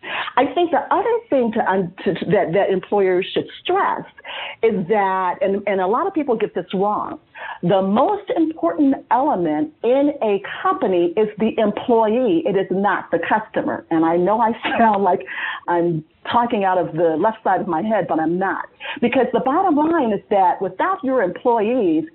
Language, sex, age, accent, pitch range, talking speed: English, female, 50-69, American, 175-255 Hz, 185 wpm